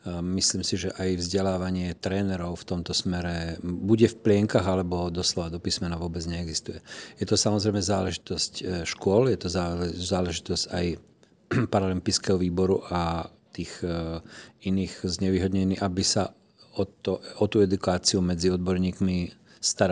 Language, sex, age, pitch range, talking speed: Slovak, male, 40-59, 90-100 Hz, 125 wpm